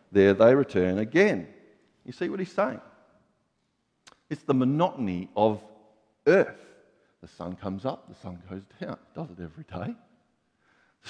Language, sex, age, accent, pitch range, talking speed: English, male, 50-69, Australian, 100-125 Hz, 145 wpm